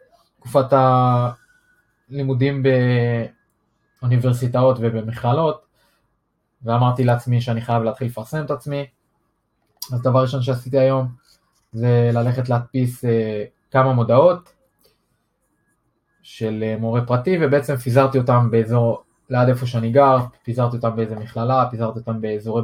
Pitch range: 120-145 Hz